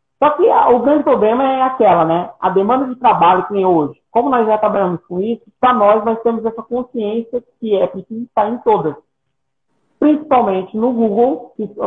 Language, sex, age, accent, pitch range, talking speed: Portuguese, male, 50-69, Brazilian, 200-250 Hz, 185 wpm